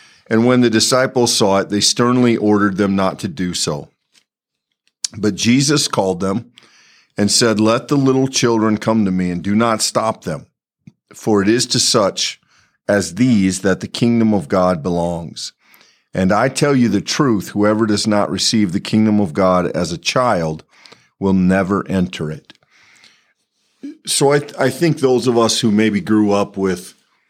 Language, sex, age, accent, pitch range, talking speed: English, male, 50-69, American, 90-110 Hz, 170 wpm